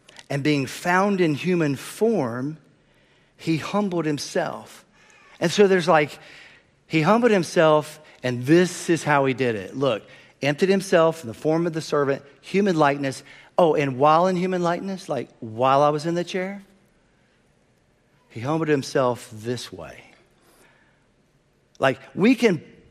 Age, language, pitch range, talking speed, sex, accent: 50-69, English, 130-170 Hz, 140 wpm, male, American